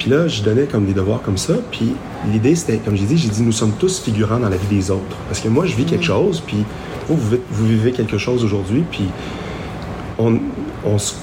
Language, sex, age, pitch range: French, male, 30-49, 100-115 Hz